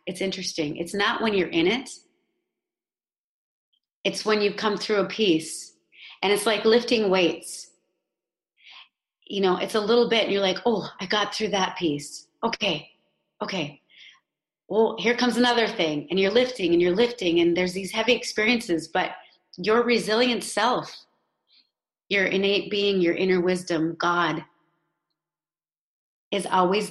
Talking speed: 145 wpm